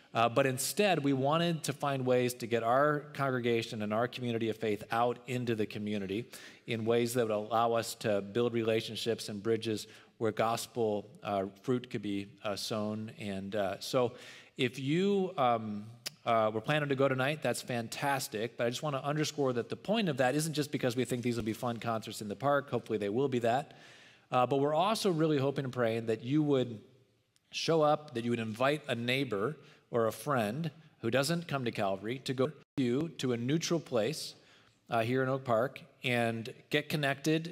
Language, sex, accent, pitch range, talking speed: English, male, American, 115-140 Hz, 200 wpm